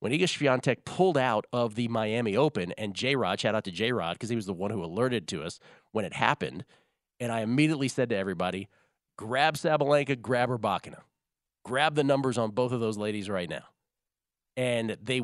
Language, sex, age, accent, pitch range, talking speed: English, male, 40-59, American, 105-140 Hz, 195 wpm